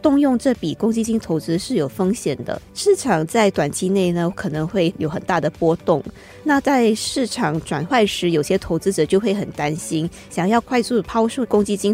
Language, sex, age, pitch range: Chinese, female, 20-39, 165-220 Hz